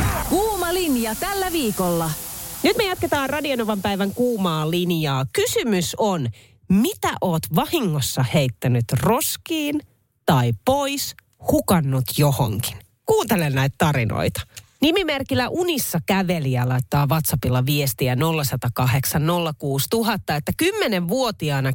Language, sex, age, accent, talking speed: Finnish, female, 30-49, native, 90 wpm